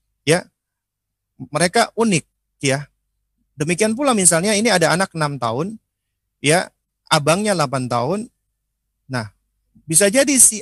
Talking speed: 115 wpm